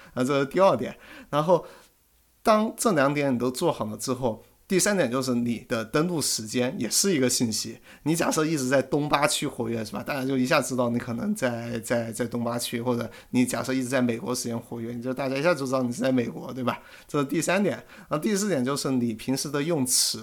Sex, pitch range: male, 120-140 Hz